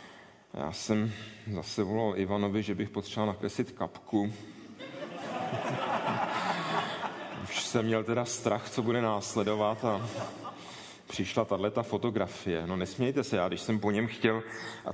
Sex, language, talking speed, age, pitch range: male, Czech, 130 wpm, 30-49, 100-120 Hz